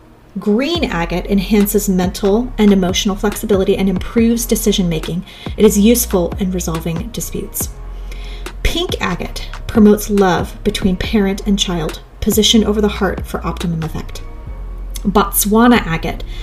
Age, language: 30-49, English